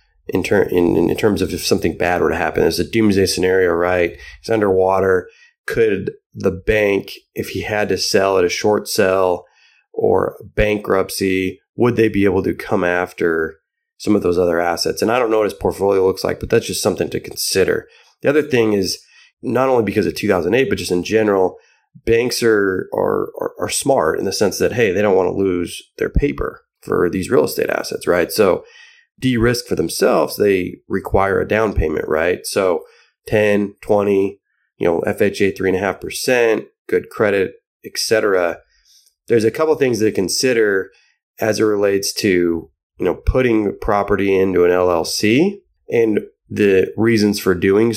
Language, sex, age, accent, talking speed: English, male, 30-49, American, 180 wpm